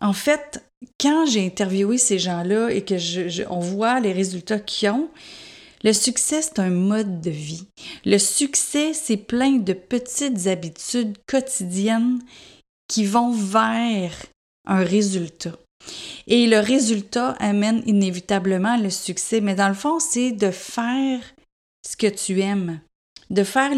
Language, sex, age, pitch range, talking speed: French, female, 30-49, 185-245 Hz, 145 wpm